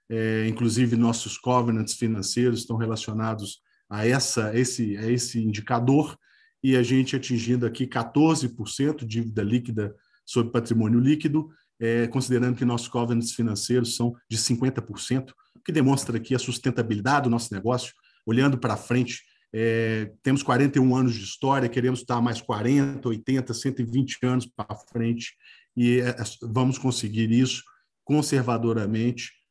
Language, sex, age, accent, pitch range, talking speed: Portuguese, male, 40-59, Brazilian, 115-130 Hz, 125 wpm